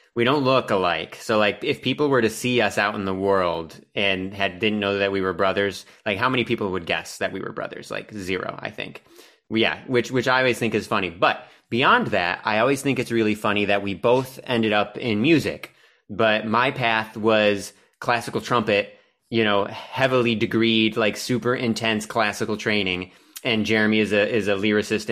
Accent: American